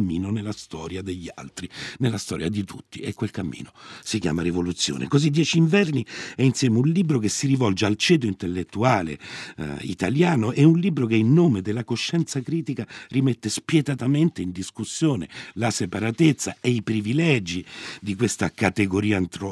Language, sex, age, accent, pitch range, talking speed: Italian, male, 50-69, native, 90-130 Hz, 155 wpm